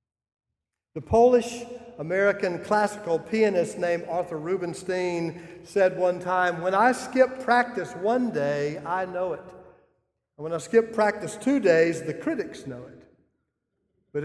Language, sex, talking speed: English, male, 135 wpm